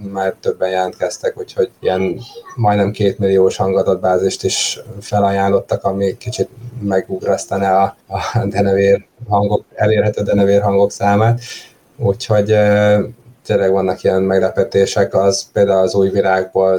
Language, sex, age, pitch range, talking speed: Hungarian, male, 20-39, 95-120 Hz, 115 wpm